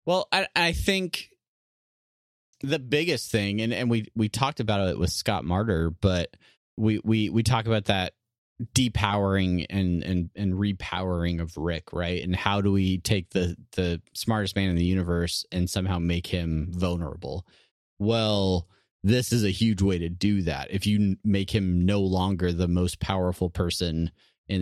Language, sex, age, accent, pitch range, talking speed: English, male, 30-49, American, 90-110 Hz, 170 wpm